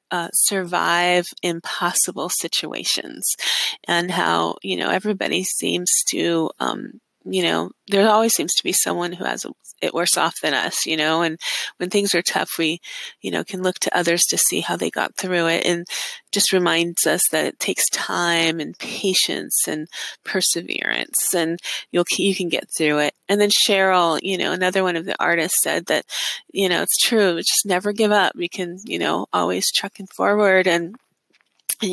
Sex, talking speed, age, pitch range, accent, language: female, 180 wpm, 20-39, 170-195 Hz, American, English